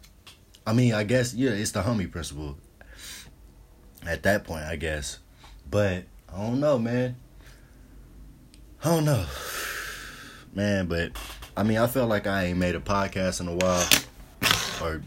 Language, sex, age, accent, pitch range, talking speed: English, male, 20-39, American, 80-105 Hz, 150 wpm